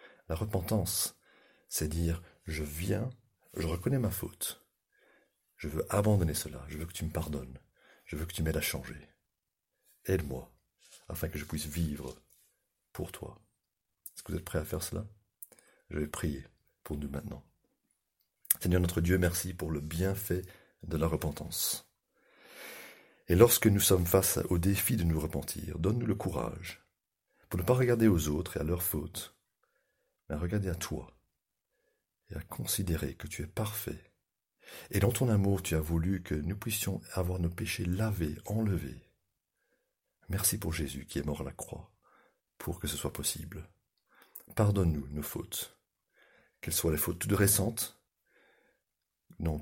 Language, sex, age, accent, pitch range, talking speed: French, male, 40-59, French, 75-95 Hz, 160 wpm